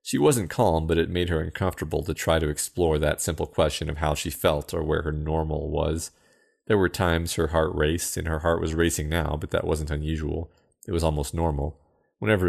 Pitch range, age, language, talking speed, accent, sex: 75-90 Hz, 30-49, English, 215 wpm, American, male